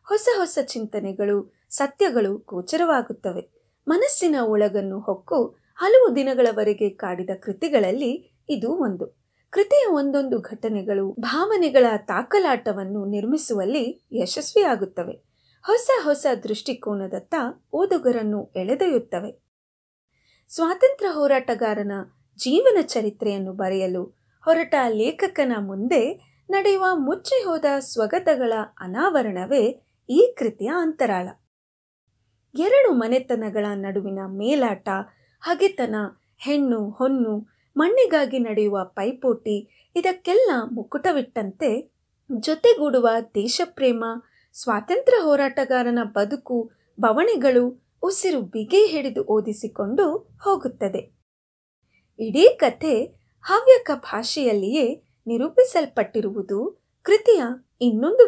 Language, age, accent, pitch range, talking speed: Kannada, 30-49, native, 210-330 Hz, 75 wpm